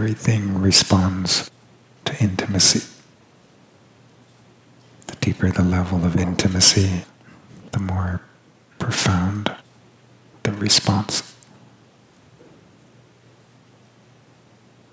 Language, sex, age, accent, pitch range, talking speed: English, male, 50-69, American, 90-105 Hz, 60 wpm